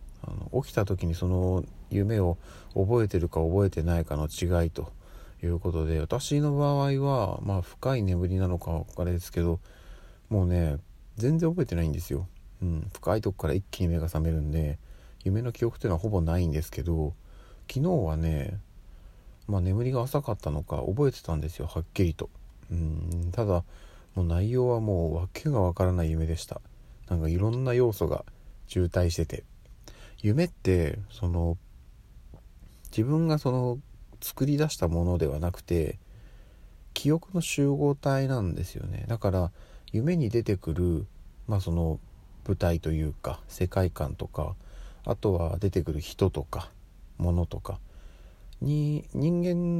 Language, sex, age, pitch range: Japanese, male, 40-59, 85-115 Hz